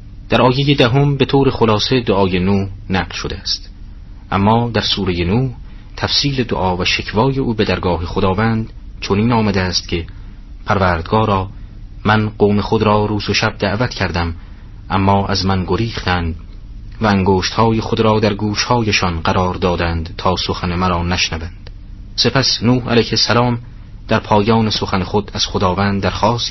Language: Persian